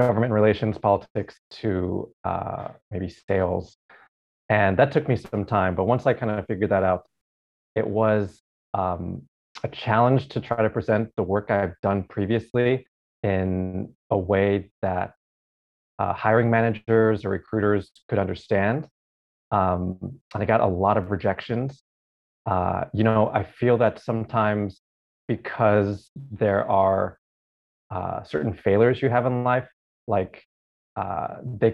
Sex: male